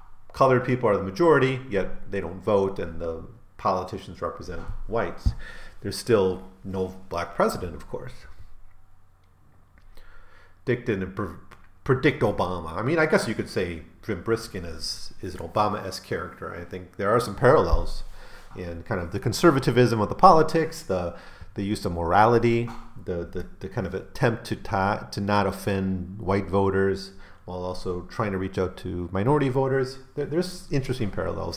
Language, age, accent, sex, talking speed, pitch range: English, 40-59, American, male, 160 wpm, 90-120 Hz